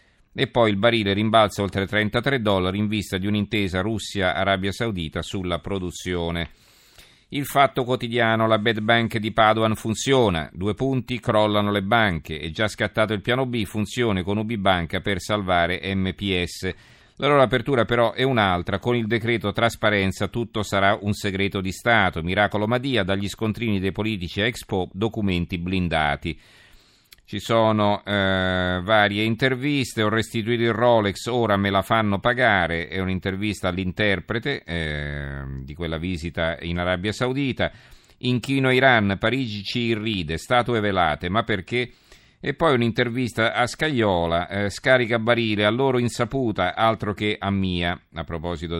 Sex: male